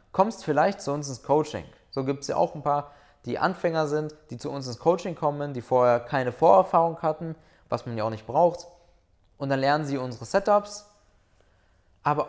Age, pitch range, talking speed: 20-39, 115-160 Hz, 195 wpm